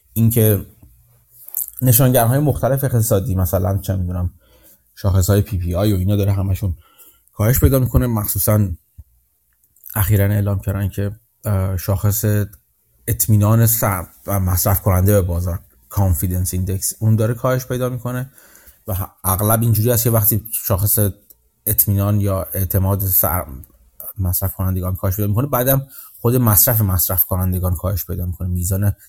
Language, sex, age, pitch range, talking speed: Persian, male, 30-49, 95-110 Hz, 130 wpm